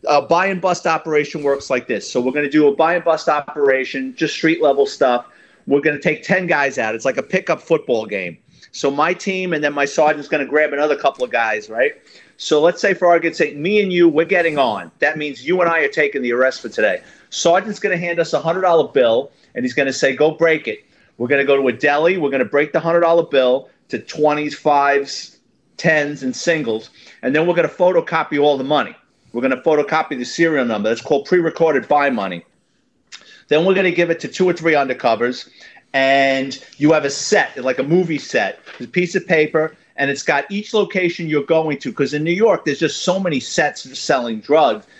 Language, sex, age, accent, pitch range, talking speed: English, male, 40-59, American, 140-175 Hz, 225 wpm